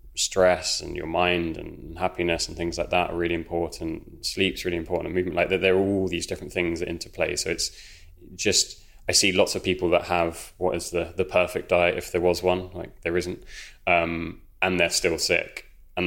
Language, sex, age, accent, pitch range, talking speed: English, male, 20-39, British, 85-95 Hz, 215 wpm